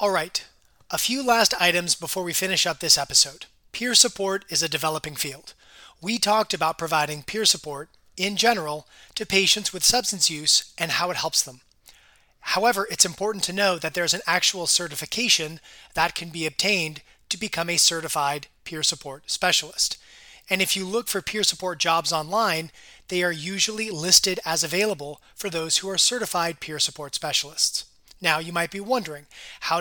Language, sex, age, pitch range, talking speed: English, male, 30-49, 155-195 Hz, 175 wpm